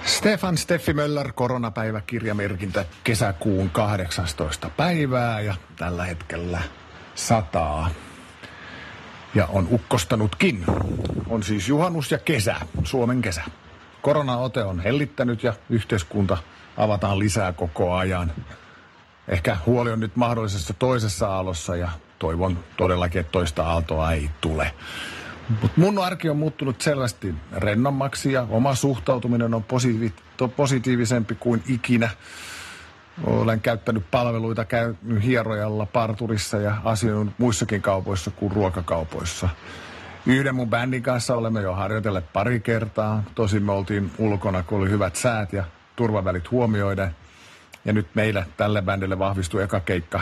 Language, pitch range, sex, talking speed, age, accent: Finnish, 90-120 Hz, male, 120 wpm, 50-69, native